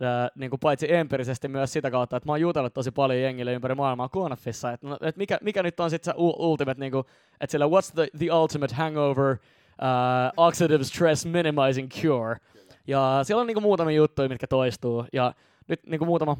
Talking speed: 185 wpm